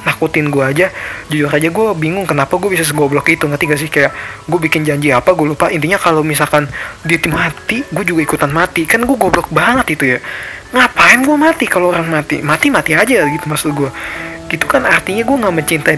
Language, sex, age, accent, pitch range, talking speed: Indonesian, male, 20-39, native, 135-160 Hz, 205 wpm